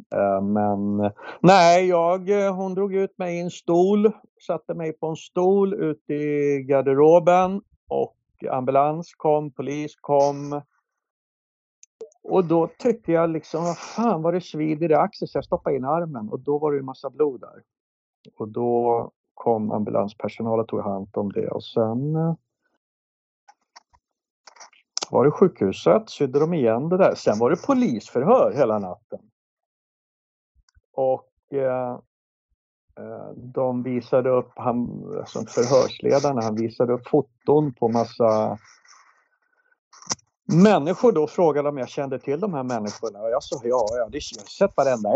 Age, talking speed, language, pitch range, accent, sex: 60-79, 140 wpm, Swedish, 115-170 Hz, native, male